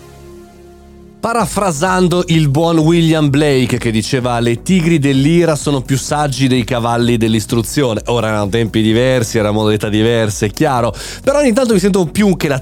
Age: 30-49